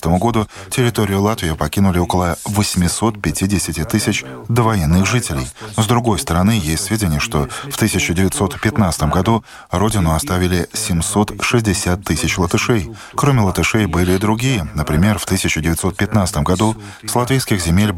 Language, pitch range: Russian, 85-110 Hz